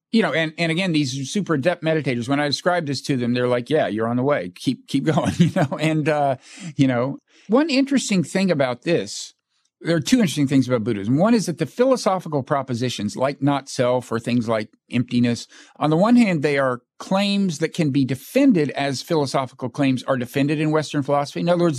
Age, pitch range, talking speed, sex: 50-69, 130-165 Hz, 210 wpm, male